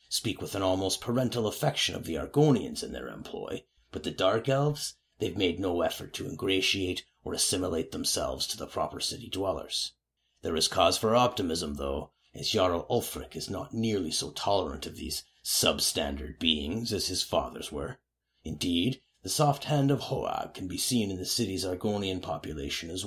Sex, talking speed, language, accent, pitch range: male, 175 wpm, English, American, 80-115 Hz